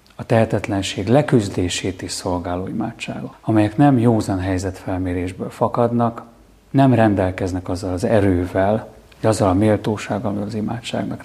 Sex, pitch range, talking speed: male, 95-125 Hz, 125 wpm